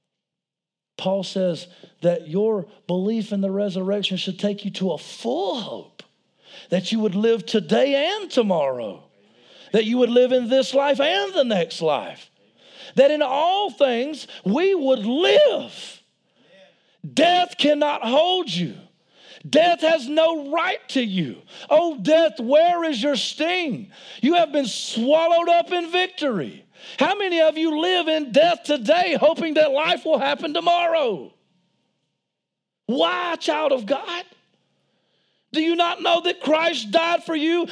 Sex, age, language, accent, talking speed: male, 50-69, English, American, 145 wpm